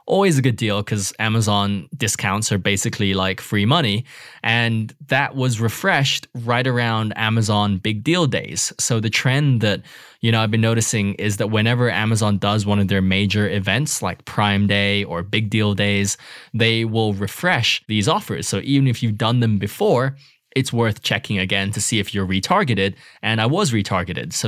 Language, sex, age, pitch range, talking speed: English, male, 20-39, 105-135 Hz, 180 wpm